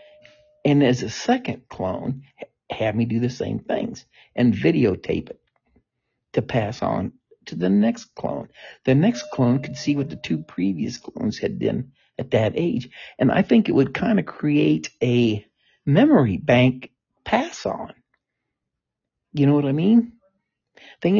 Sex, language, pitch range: male, English, 115-155 Hz